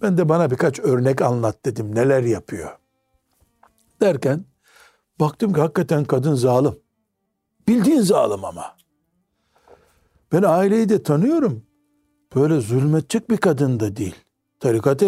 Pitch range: 125-190 Hz